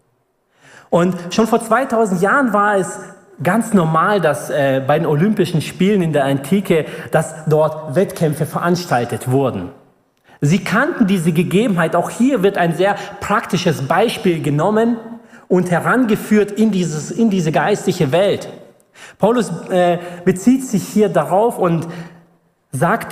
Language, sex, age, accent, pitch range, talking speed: German, male, 40-59, German, 145-195 Hz, 130 wpm